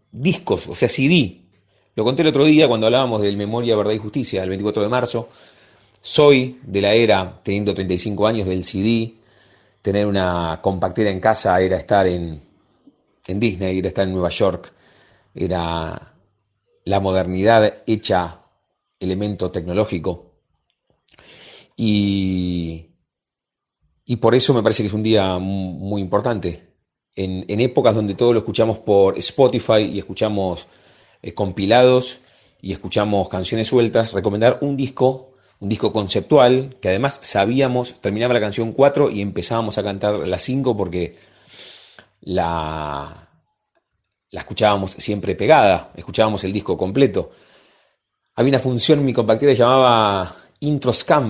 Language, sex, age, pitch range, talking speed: Spanish, male, 30-49, 95-120 Hz, 135 wpm